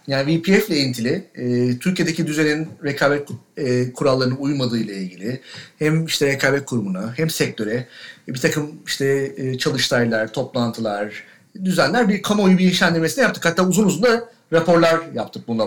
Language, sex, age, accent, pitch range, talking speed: Turkish, male, 40-59, native, 130-190 Hz, 150 wpm